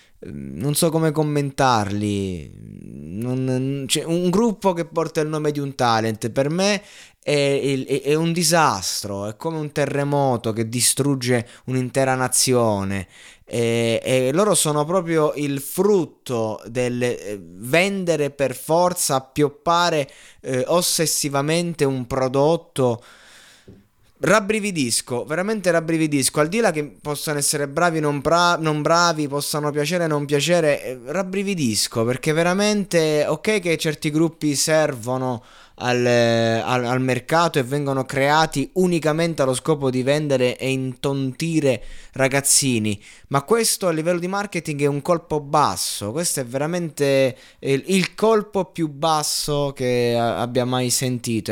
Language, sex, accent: Italian, male, native